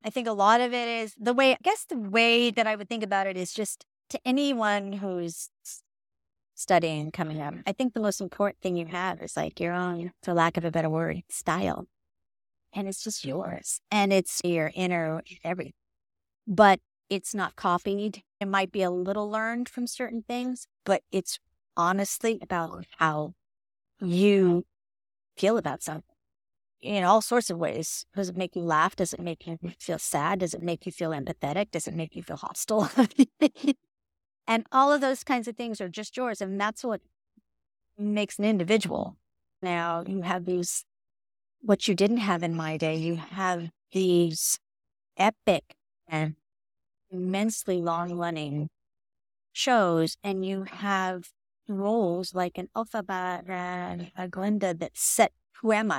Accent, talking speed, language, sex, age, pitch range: American, 165 wpm, English, female, 30-49, 170-215 Hz